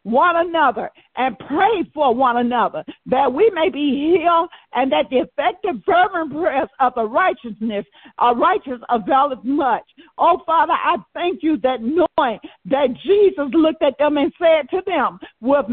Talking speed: 165 wpm